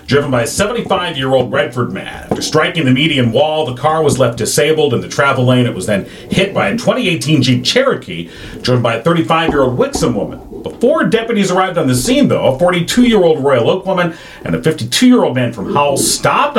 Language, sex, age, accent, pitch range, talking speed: English, male, 40-59, American, 110-160 Hz, 195 wpm